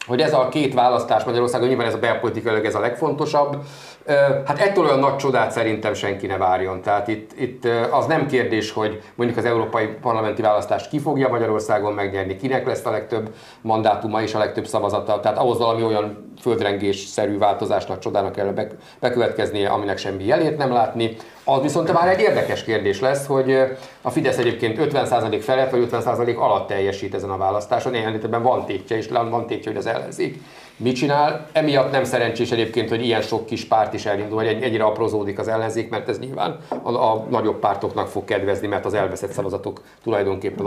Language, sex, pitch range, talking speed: Hungarian, male, 105-130 Hz, 185 wpm